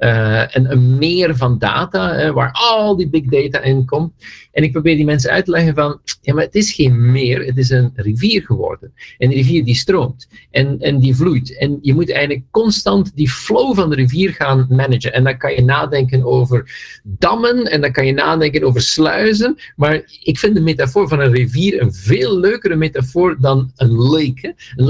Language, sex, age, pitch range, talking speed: Dutch, male, 50-69, 130-165 Hz, 200 wpm